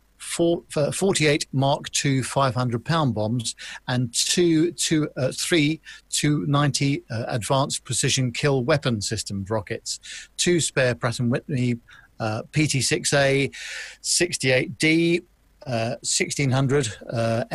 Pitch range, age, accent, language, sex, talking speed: 120-150 Hz, 50-69, British, English, male, 90 wpm